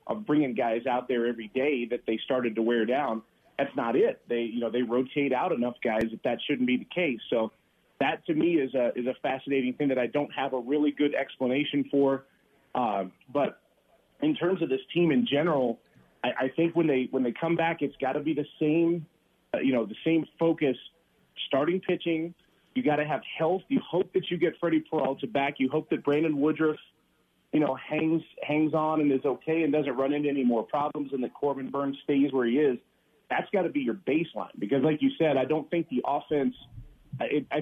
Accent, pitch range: American, 130-155 Hz